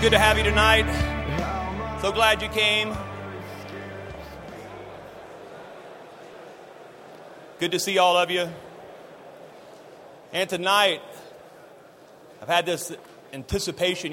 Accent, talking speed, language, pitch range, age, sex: American, 90 wpm, English, 125-160 Hz, 30-49, male